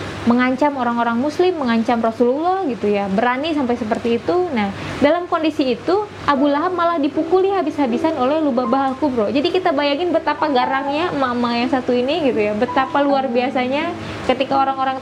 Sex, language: female, Indonesian